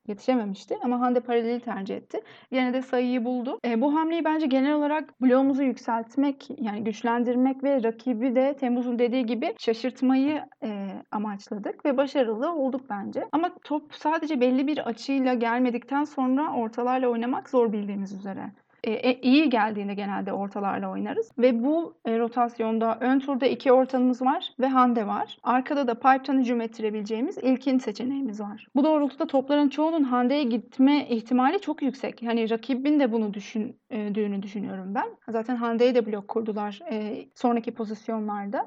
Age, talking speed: 30-49, 150 wpm